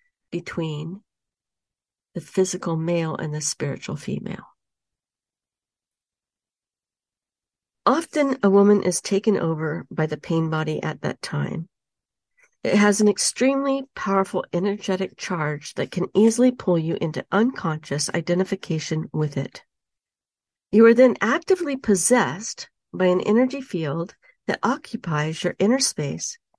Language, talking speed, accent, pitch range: English, 115 wpm, American, 175-240 Hz